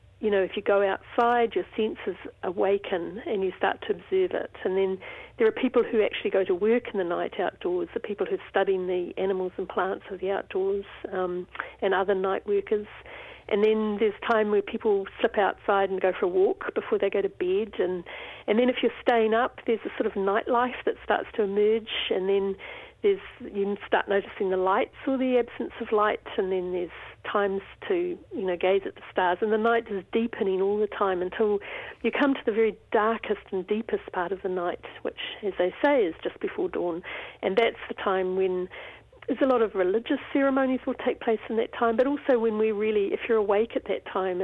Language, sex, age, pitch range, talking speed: English, female, 50-69, 195-270 Hz, 215 wpm